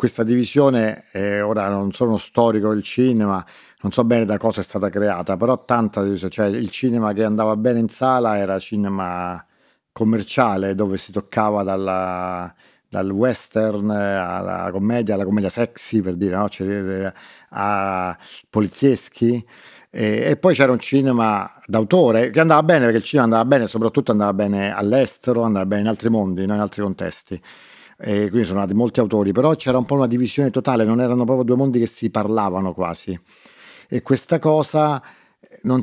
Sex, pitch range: male, 100-120 Hz